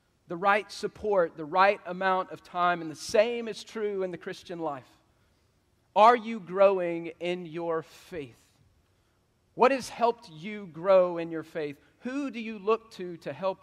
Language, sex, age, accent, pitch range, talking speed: English, male, 40-59, American, 155-200 Hz, 165 wpm